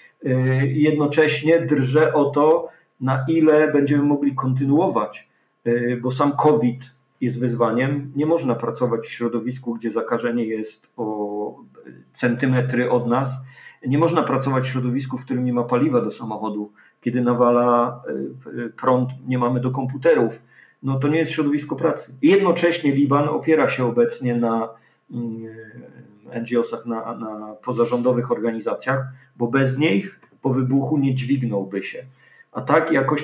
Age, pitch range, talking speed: 40-59, 120-135 Hz, 130 wpm